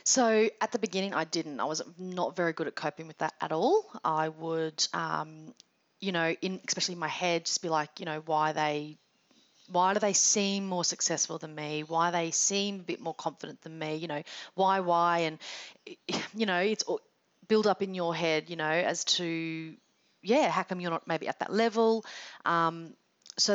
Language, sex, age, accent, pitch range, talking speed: English, female, 30-49, Australian, 165-205 Hz, 200 wpm